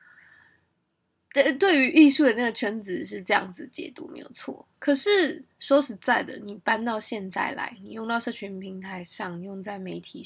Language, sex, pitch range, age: Chinese, female, 205-275 Hz, 10-29